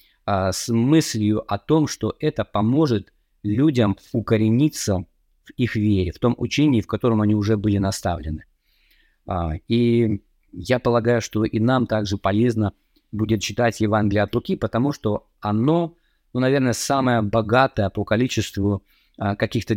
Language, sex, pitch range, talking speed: Russian, male, 105-120 Hz, 135 wpm